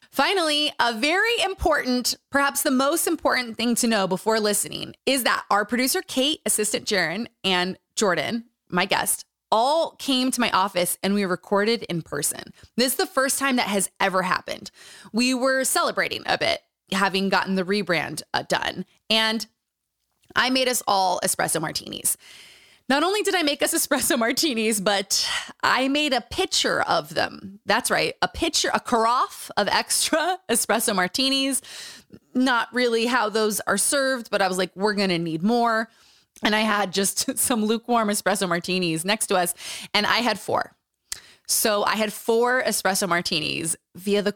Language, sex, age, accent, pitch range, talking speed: English, female, 20-39, American, 195-265 Hz, 165 wpm